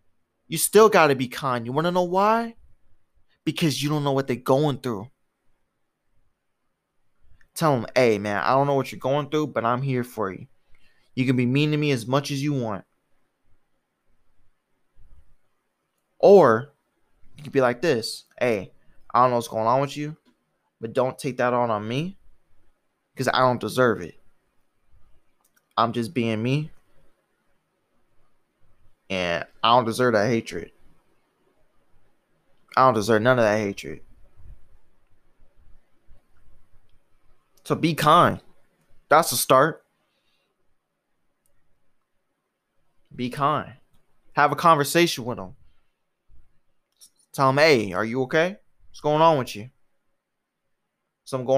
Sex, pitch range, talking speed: male, 115-150 Hz, 135 wpm